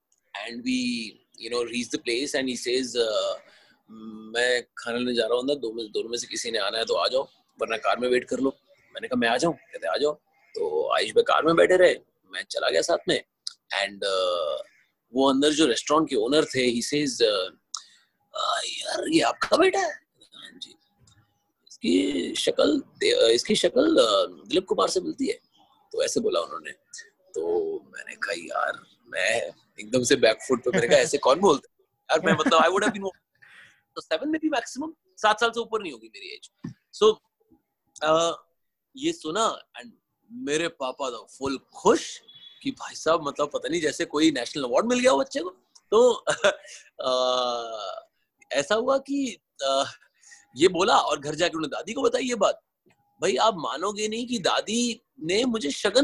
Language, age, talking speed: English, 30-49, 80 wpm